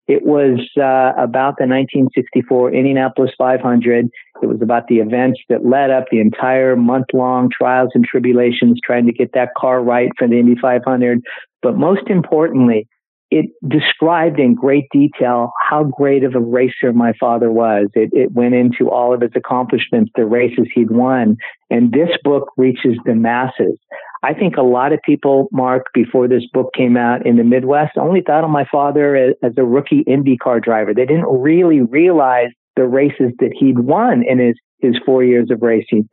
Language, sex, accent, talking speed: English, male, American, 180 wpm